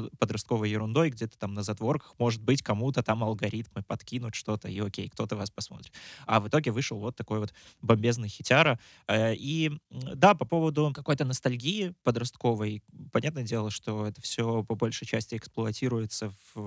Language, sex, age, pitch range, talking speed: Russian, male, 20-39, 110-135 Hz, 160 wpm